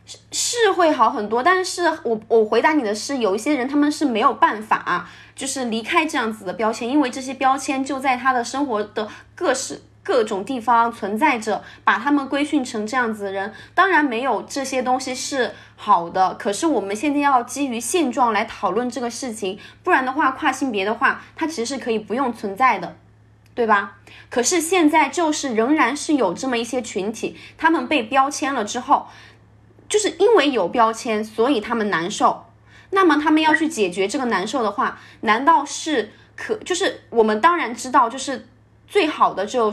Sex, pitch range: female, 215-290 Hz